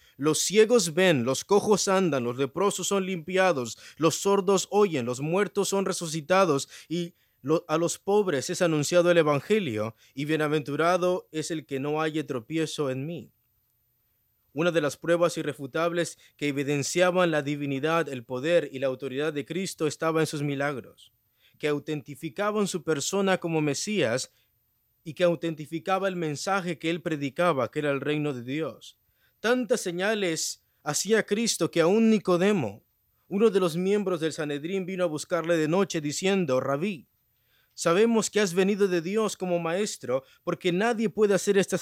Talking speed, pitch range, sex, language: 155 wpm, 145-185 Hz, male, English